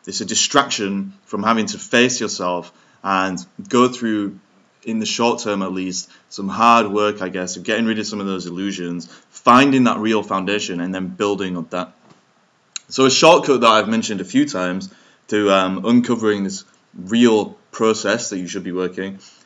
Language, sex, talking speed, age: English, male, 180 wpm, 20-39